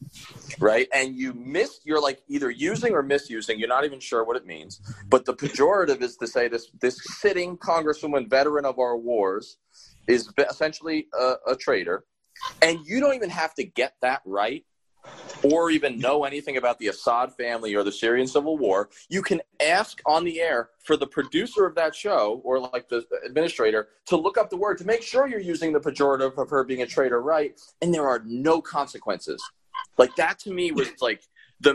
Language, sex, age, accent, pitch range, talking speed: English, male, 30-49, American, 125-200 Hz, 195 wpm